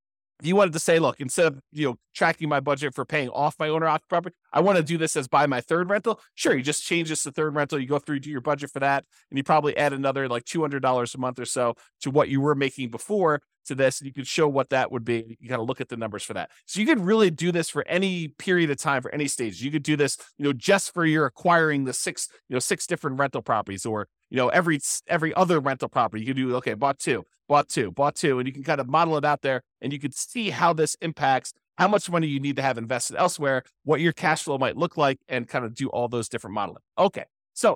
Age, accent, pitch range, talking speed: 30-49, American, 130-165 Hz, 275 wpm